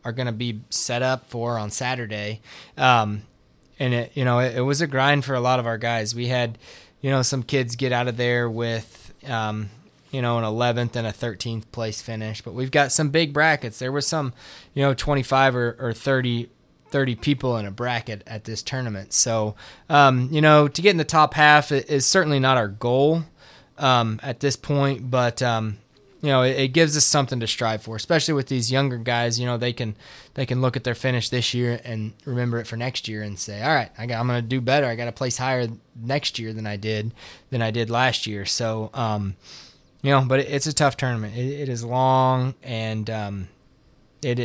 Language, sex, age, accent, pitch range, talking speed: English, male, 20-39, American, 115-135 Hz, 225 wpm